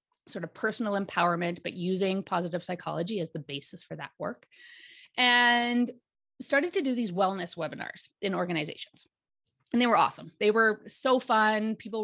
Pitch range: 185-245 Hz